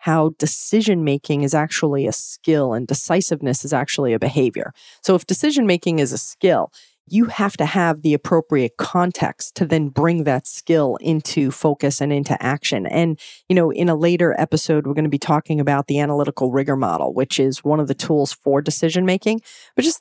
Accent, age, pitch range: American, 30-49, 145-175 Hz